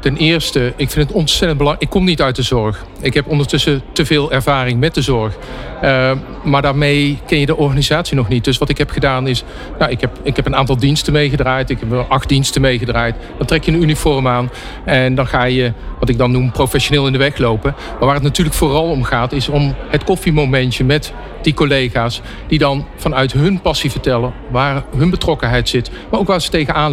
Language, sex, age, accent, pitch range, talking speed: Dutch, male, 50-69, Dutch, 125-150 Hz, 215 wpm